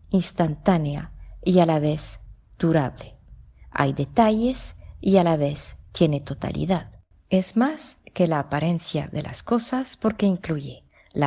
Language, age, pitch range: Spanish, 40-59, 150-205 Hz